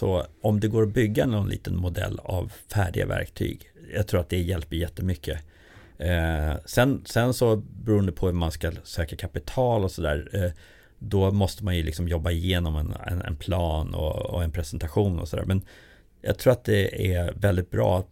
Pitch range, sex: 85-105 Hz, male